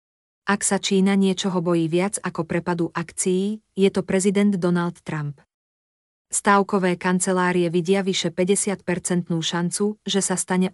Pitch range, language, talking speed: 170-195 Hz, Slovak, 130 wpm